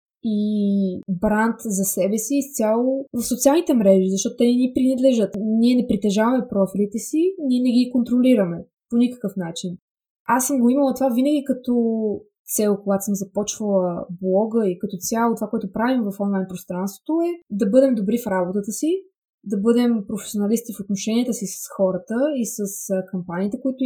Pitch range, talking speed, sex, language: 200-265 Hz, 165 wpm, female, Bulgarian